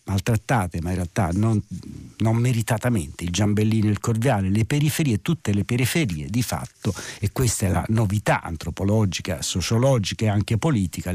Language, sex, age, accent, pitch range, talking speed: Italian, male, 60-79, native, 100-130 Hz, 155 wpm